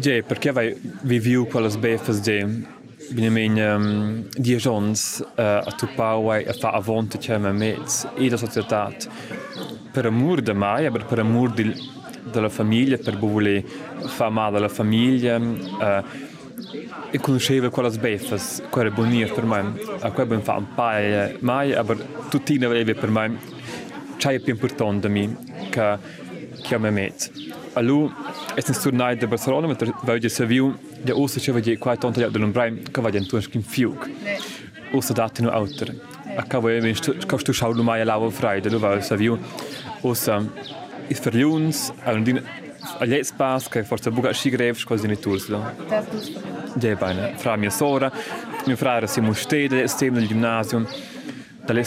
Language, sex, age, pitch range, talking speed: German, male, 20-39, 110-130 Hz, 95 wpm